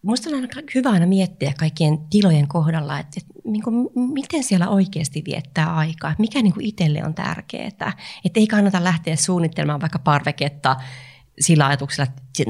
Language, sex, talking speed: Finnish, female, 165 wpm